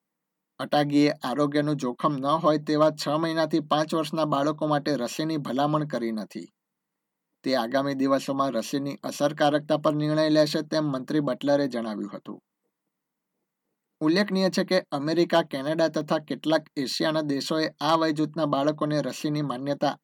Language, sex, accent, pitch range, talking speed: Gujarati, male, native, 140-160 Hz, 125 wpm